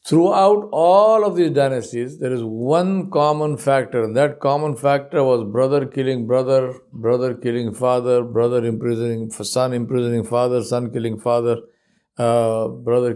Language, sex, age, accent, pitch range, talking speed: English, male, 60-79, Indian, 120-150 Hz, 140 wpm